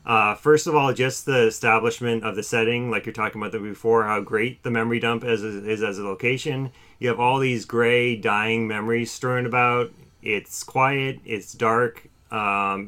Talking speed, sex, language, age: 180 wpm, male, English, 30-49